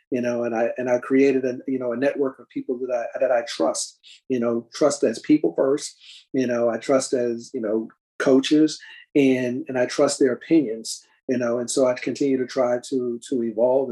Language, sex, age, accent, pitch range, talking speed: English, male, 40-59, American, 120-135 Hz, 215 wpm